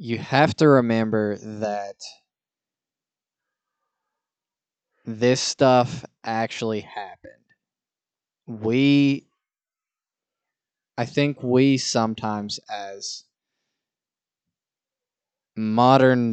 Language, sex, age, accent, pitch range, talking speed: English, male, 20-39, American, 105-125 Hz, 60 wpm